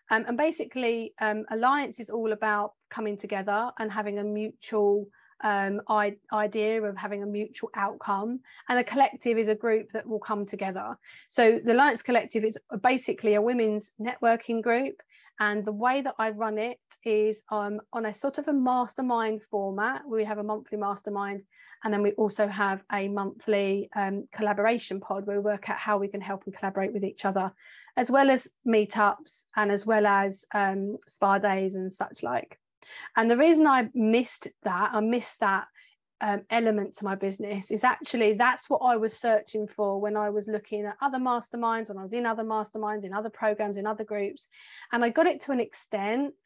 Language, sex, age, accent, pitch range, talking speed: English, female, 30-49, British, 205-240 Hz, 190 wpm